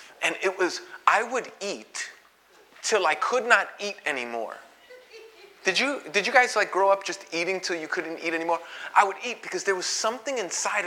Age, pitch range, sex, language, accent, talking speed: 30-49, 150-205 Hz, male, English, American, 195 wpm